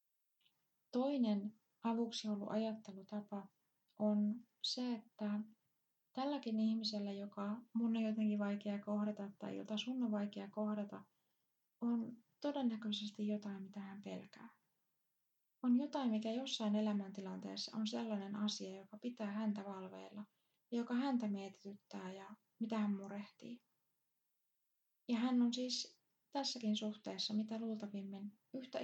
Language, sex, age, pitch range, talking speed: Finnish, female, 20-39, 205-230 Hz, 115 wpm